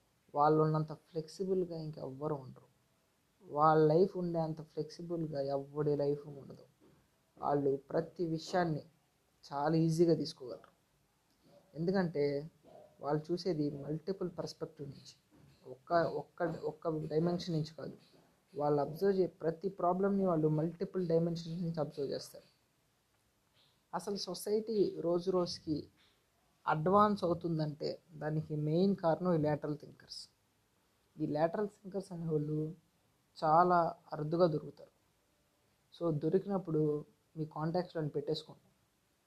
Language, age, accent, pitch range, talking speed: Telugu, 20-39, native, 150-175 Hz, 100 wpm